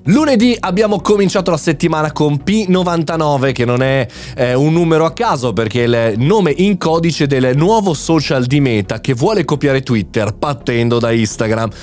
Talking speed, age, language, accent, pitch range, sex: 165 wpm, 20-39, Italian, native, 115-160 Hz, male